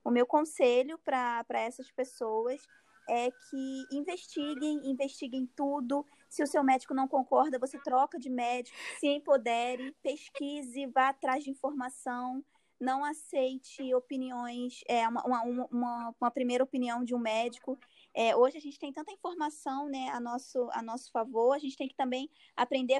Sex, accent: female, Brazilian